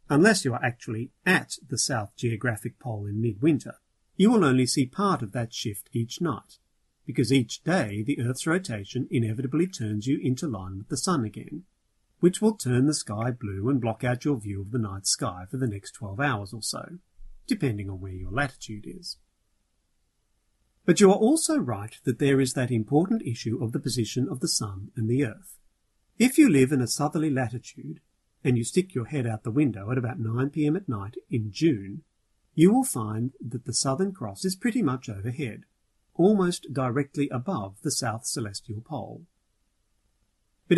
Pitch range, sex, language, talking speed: 110-145 Hz, male, English, 185 wpm